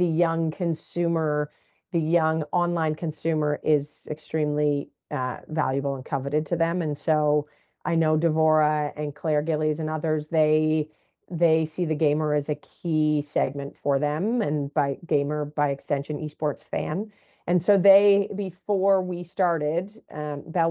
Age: 40-59